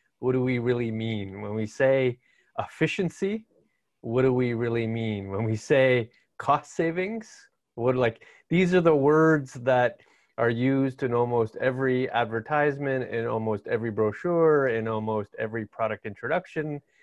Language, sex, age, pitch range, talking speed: English, male, 30-49, 110-135 Hz, 145 wpm